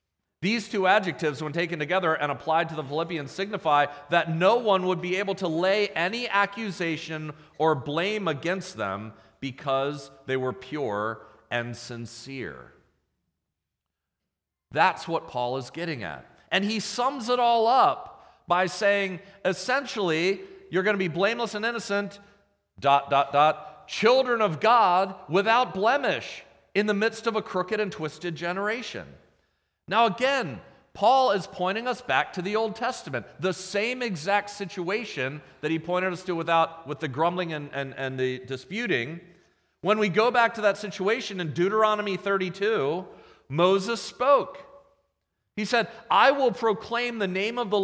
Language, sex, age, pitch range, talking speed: English, male, 40-59, 150-210 Hz, 150 wpm